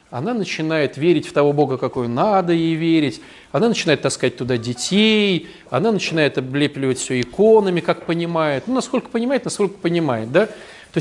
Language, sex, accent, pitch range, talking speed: Russian, male, native, 160-220 Hz, 160 wpm